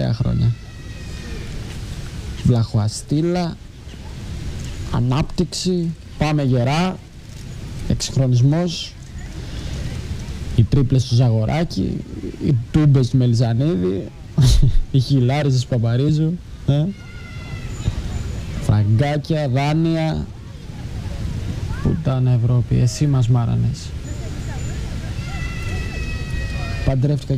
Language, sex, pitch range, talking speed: Greek, male, 110-130 Hz, 55 wpm